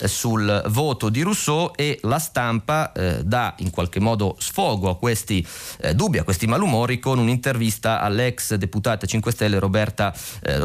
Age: 30-49